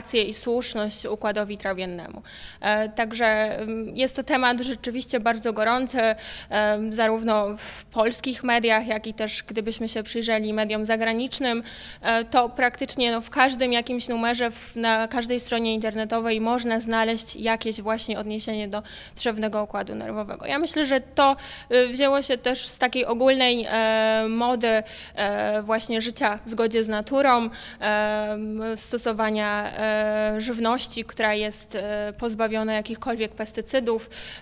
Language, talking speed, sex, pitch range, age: Polish, 115 wpm, female, 215-245 Hz, 20-39